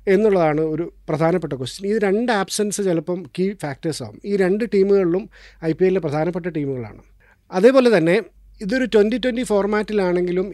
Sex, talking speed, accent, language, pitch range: male, 135 wpm, native, Malayalam, 165-200 Hz